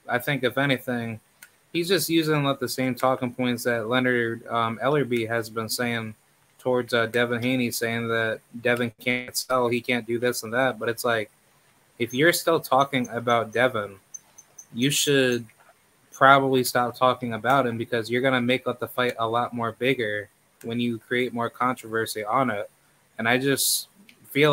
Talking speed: 175 wpm